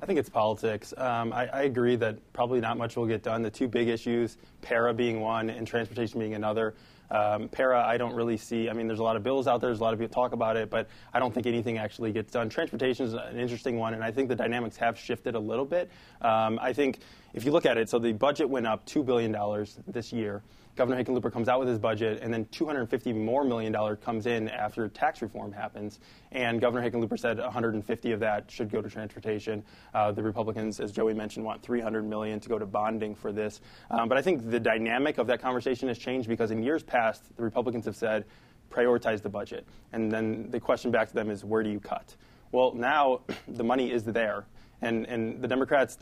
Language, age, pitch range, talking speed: English, 20-39, 110-120 Hz, 230 wpm